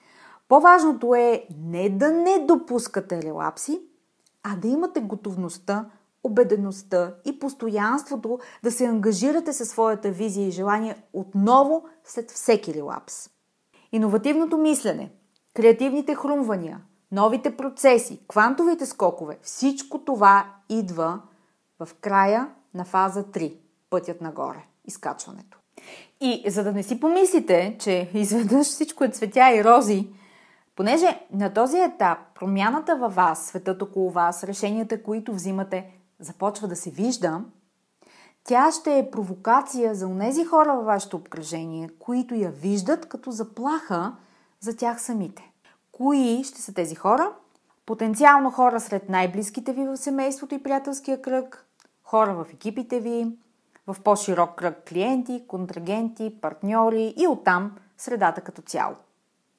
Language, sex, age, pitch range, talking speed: Bulgarian, female, 30-49, 195-265 Hz, 125 wpm